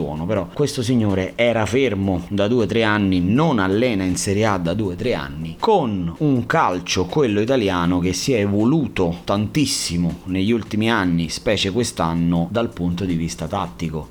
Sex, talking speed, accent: male, 155 wpm, native